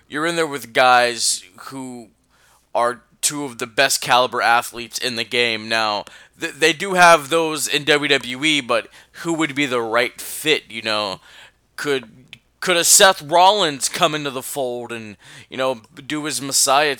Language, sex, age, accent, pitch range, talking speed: English, male, 20-39, American, 115-140 Hz, 165 wpm